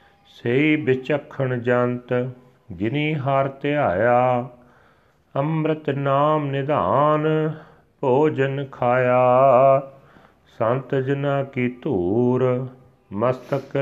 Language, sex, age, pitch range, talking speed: Punjabi, male, 40-59, 110-135 Hz, 75 wpm